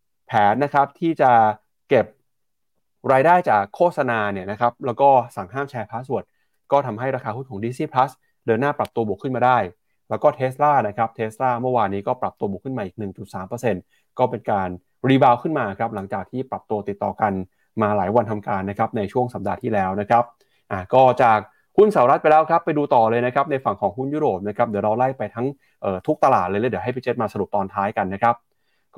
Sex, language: male, Thai